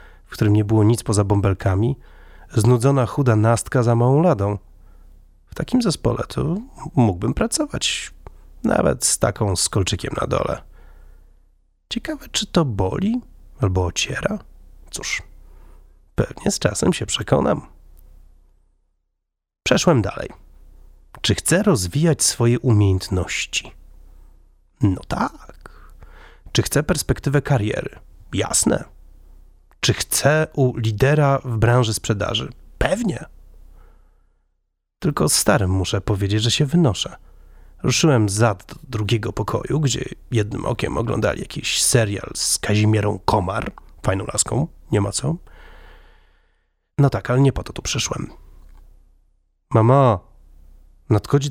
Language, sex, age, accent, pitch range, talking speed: Polish, male, 30-49, native, 95-140 Hz, 110 wpm